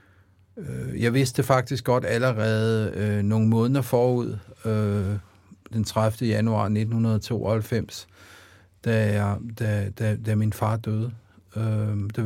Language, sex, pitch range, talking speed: Danish, male, 100-125 Hz, 100 wpm